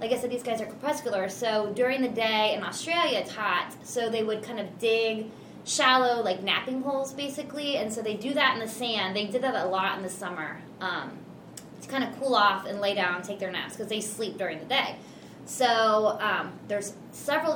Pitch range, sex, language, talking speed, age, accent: 210-255 Hz, female, English, 220 wpm, 20-39, American